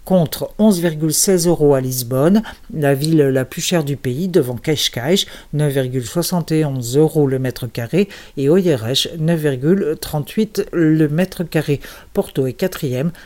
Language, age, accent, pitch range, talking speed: Portuguese, 50-69, French, 140-190 Hz, 125 wpm